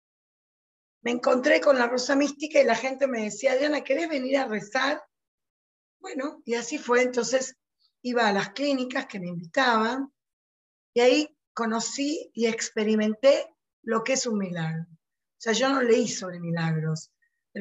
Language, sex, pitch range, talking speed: English, female, 205-265 Hz, 155 wpm